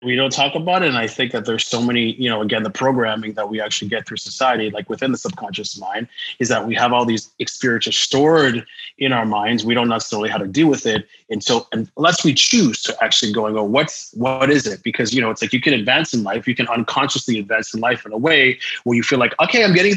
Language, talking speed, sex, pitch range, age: English, 265 wpm, male, 115-140 Hz, 30-49